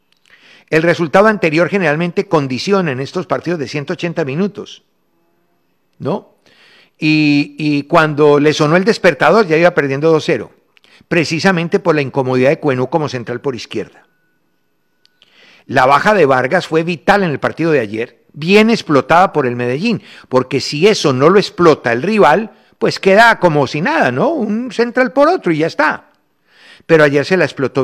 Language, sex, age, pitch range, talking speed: Spanish, male, 60-79, 135-180 Hz, 160 wpm